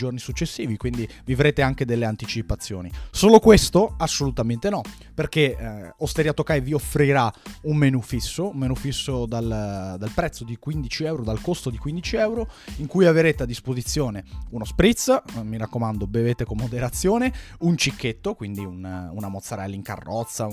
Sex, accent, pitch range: male, native, 110-150 Hz